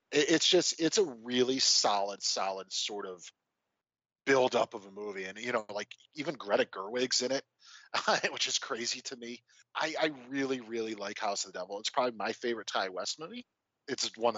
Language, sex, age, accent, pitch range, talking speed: English, male, 30-49, American, 115-180 Hz, 190 wpm